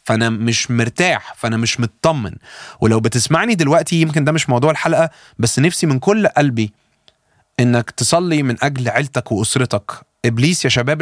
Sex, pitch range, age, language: male, 115-145 Hz, 30-49, Arabic